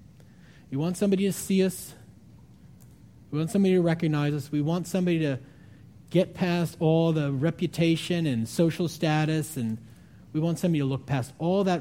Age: 40-59